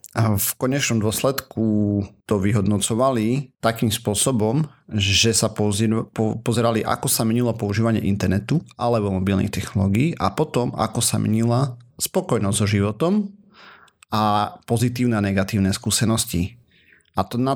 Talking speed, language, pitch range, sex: 125 wpm, Slovak, 100-120 Hz, male